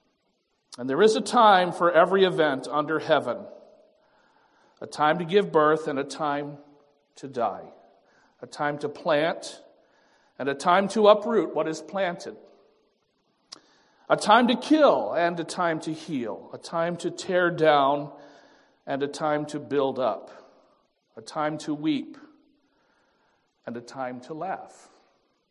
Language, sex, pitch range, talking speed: English, male, 145-200 Hz, 145 wpm